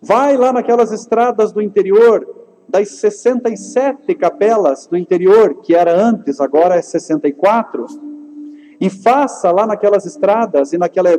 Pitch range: 190-240 Hz